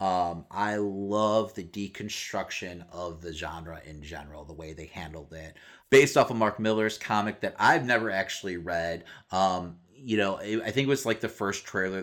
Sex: male